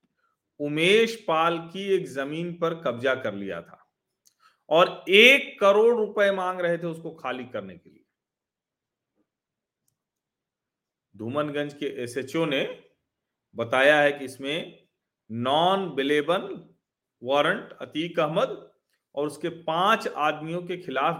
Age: 40-59